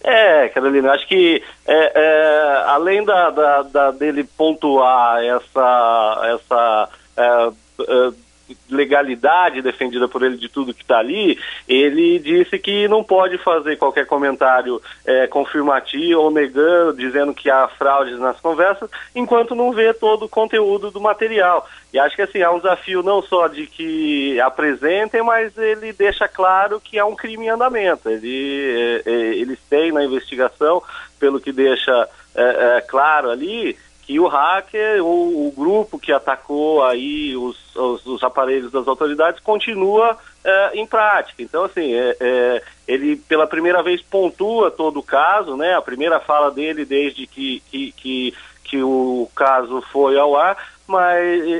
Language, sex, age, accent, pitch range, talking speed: Portuguese, male, 40-59, Brazilian, 135-205 Hz, 145 wpm